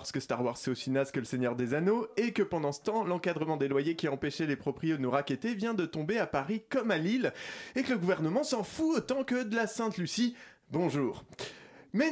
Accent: French